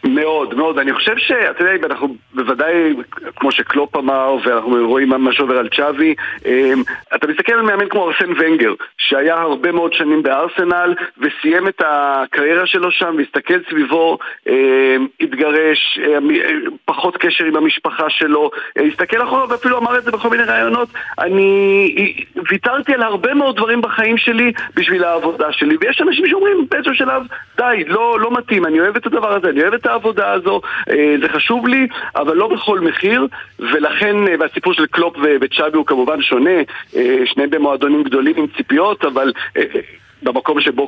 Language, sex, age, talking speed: Hebrew, male, 40-59, 155 wpm